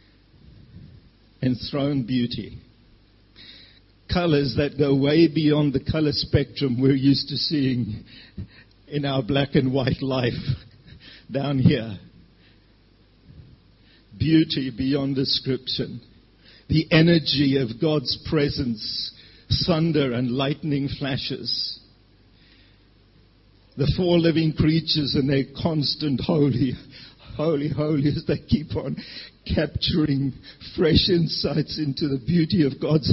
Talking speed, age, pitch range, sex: 100 wpm, 50-69, 115-150 Hz, male